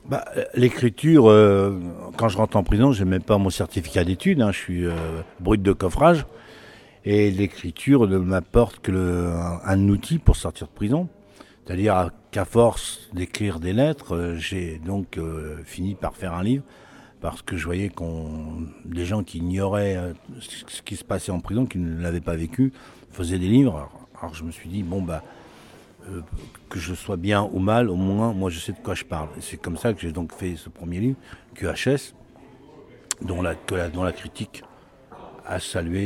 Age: 60-79